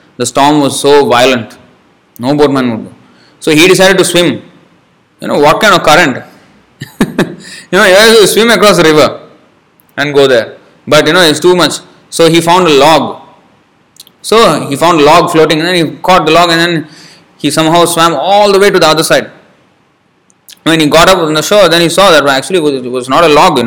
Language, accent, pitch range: English, Indian, 135-165 Hz